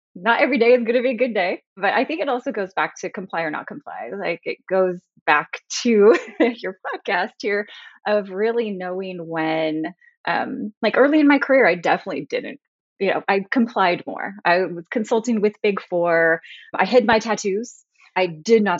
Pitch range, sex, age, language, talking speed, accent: 175-260 Hz, female, 30-49, English, 190 wpm, American